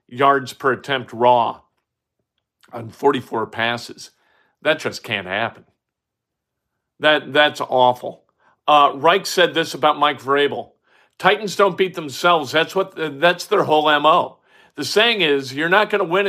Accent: American